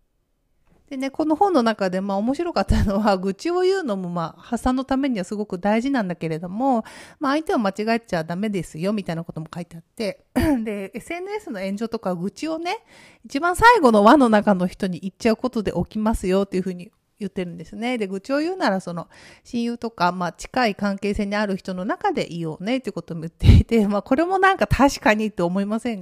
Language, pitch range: Japanese, 190-265 Hz